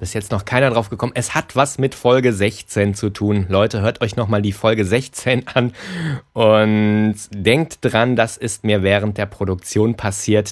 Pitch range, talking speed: 95-130 Hz, 185 wpm